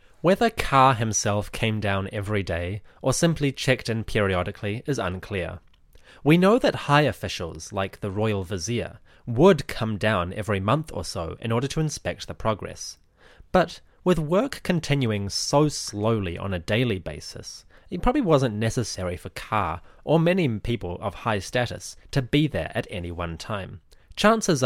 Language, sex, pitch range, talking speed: English, male, 90-130 Hz, 160 wpm